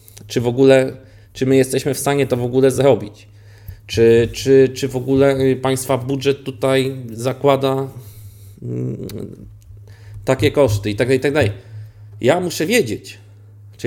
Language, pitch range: Polish, 105-140 Hz